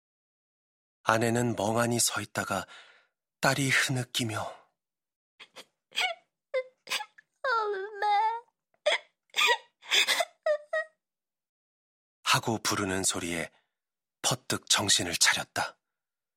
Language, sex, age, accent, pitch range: Korean, male, 40-59, native, 100-135 Hz